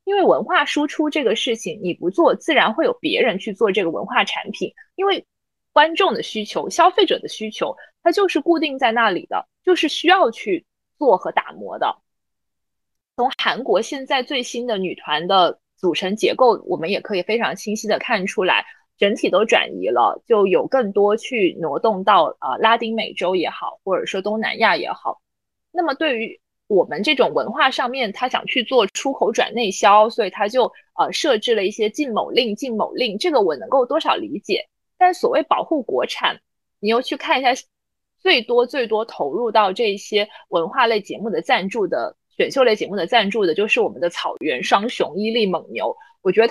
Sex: female